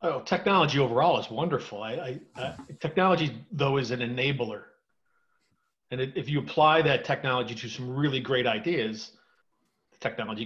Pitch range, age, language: 120-155 Hz, 40-59, English